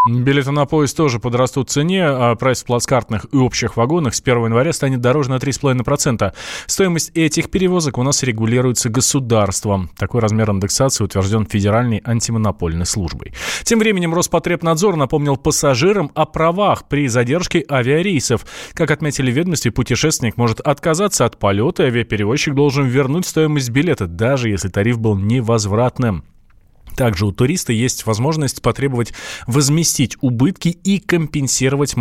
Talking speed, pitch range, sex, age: 140 wpm, 115-150 Hz, male, 20-39